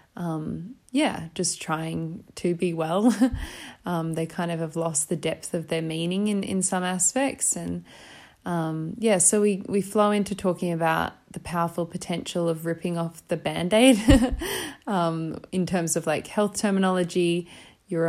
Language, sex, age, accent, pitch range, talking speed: English, female, 20-39, Australian, 160-185 Hz, 160 wpm